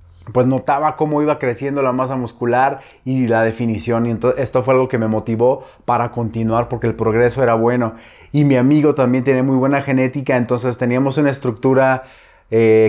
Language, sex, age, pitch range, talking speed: Spanish, male, 30-49, 115-135 Hz, 175 wpm